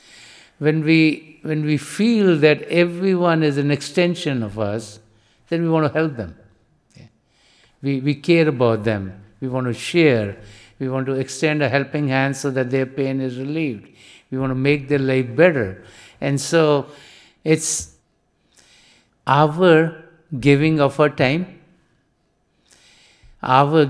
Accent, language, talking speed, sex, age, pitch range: Indian, English, 145 wpm, male, 60-79, 130-155 Hz